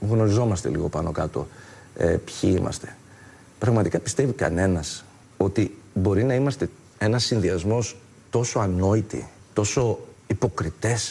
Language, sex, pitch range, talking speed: Greek, male, 100-140 Hz, 110 wpm